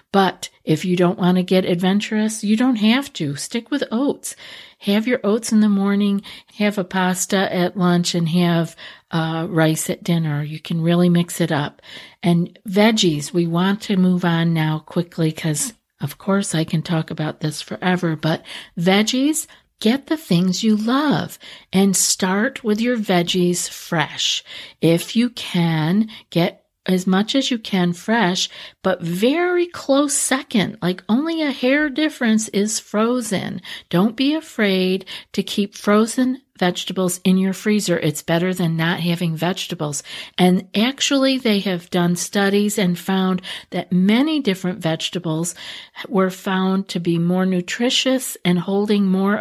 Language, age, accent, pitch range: English, 50-69, American, 175-220 Hz